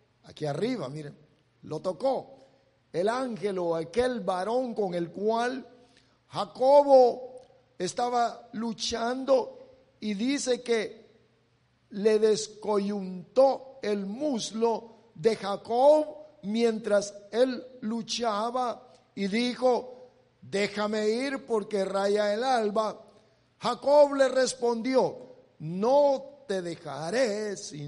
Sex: male